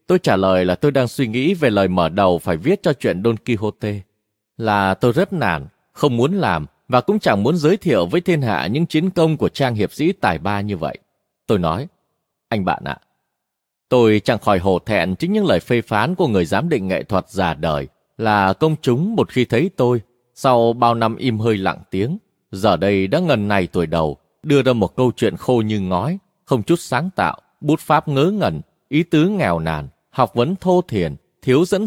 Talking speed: 220 wpm